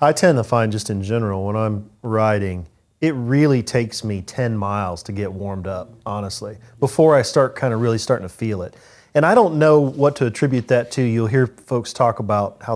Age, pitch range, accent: 40-59, 105-125 Hz, American